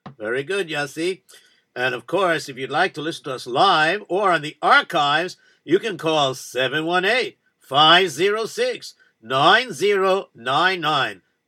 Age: 60-79